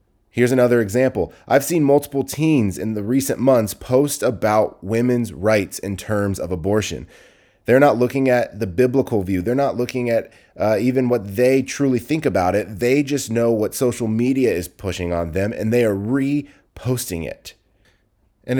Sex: male